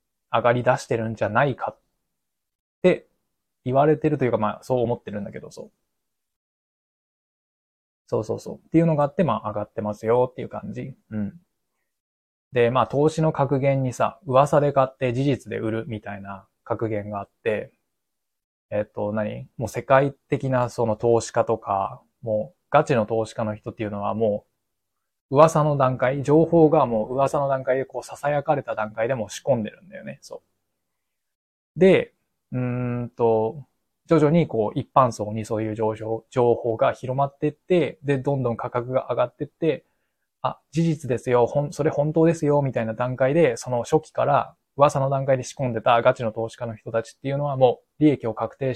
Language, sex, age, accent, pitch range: Japanese, male, 20-39, native, 110-140 Hz